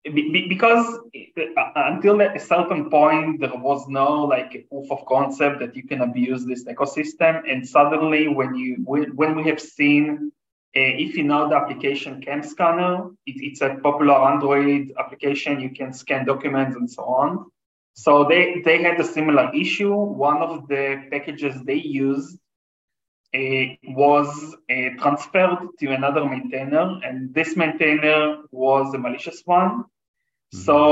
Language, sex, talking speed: English, male, 145 wpm